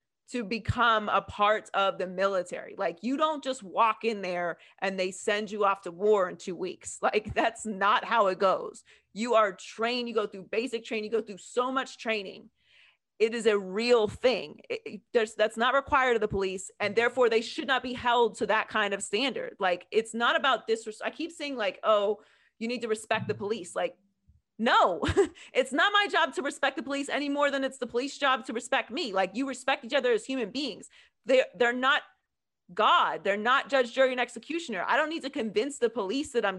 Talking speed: 215 wpm